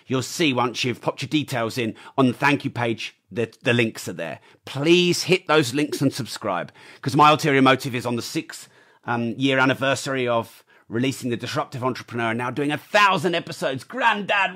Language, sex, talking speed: English, male, 195 wpm